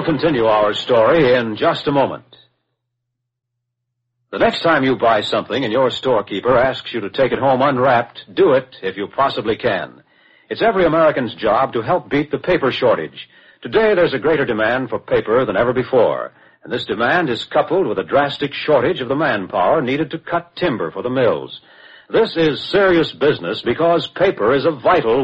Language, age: English, 60-79